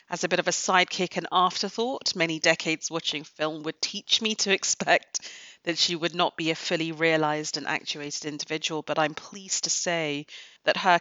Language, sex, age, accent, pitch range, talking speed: English, female, 30-49, British, 160-195 Hz, 190 wpm